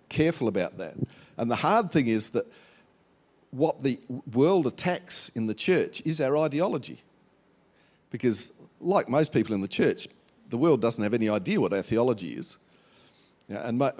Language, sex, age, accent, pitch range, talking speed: English, male, 50-69, Australian, 110-150 Hz, 160 wpm